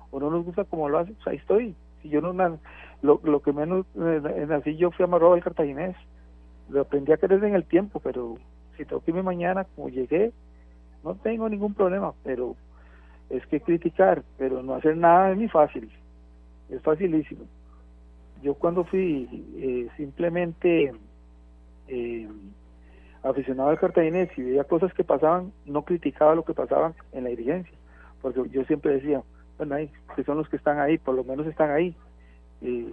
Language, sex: Spanish, male